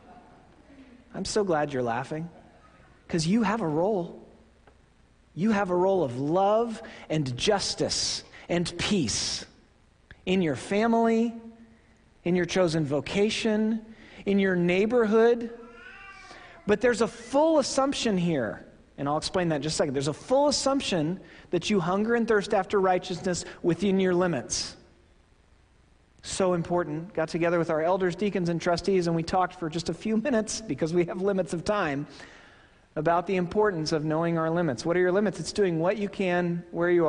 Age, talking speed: 40-59, 160 wpm